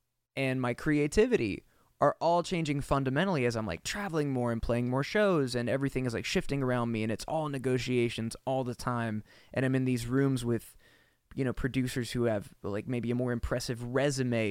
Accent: American